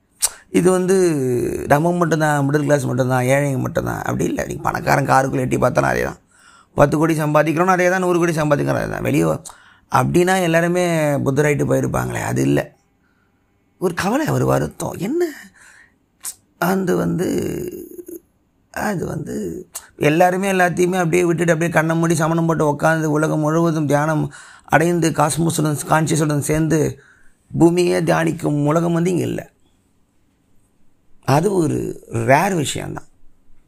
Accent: native